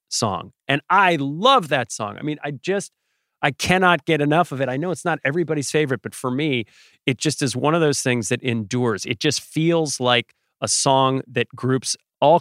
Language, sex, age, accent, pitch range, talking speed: English, male, 30-49, American, 125-165 Hz, 210 wpm